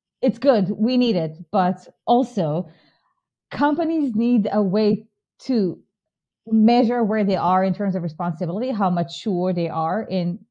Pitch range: 180-230 Hz